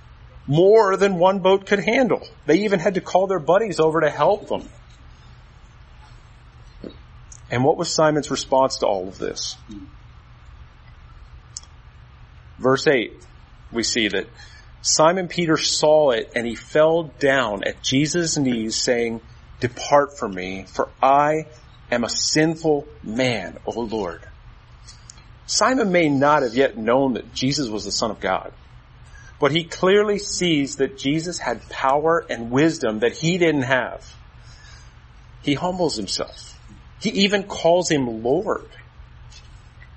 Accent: American